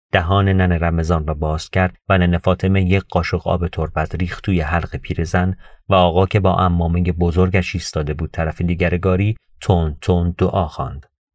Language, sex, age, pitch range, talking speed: Persian, male, 40-59, 80-95 Hz, 175 wpm